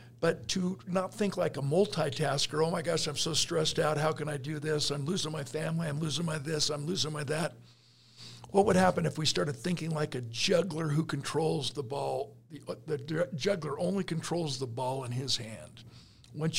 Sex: male